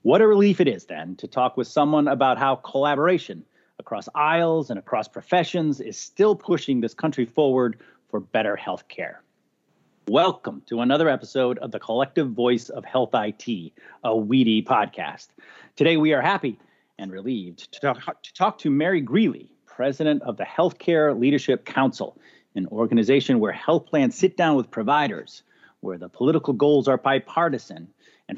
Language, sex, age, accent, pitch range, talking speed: English, male, 30-49, American, 120-160 Hz, 160 wpm